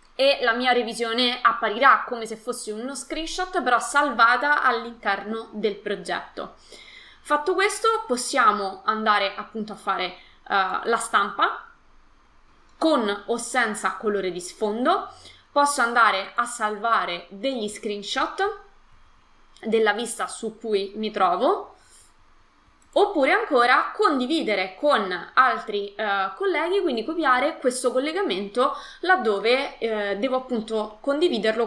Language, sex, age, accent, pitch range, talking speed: Italian, female, 20-39, native, 210-275 Hz, 110 wpm